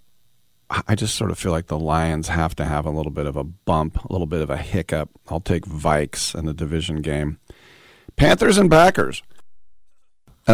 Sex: male